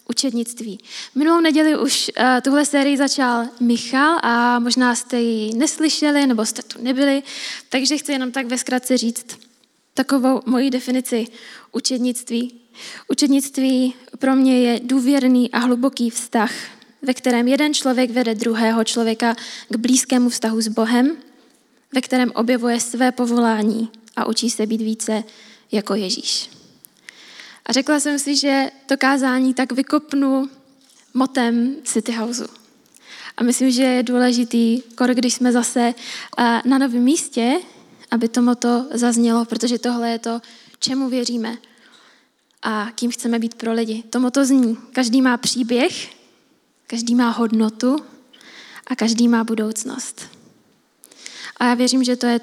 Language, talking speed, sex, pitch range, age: Czech, 135 wpm, female, 235-265 Hz, 10-29